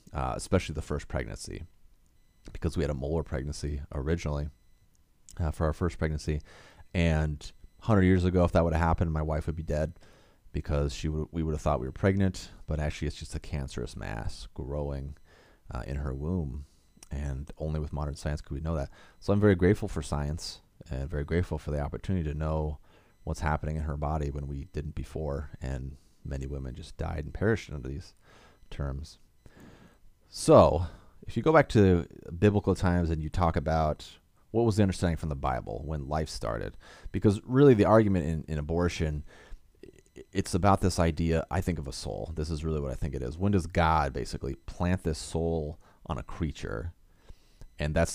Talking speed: 190 wpm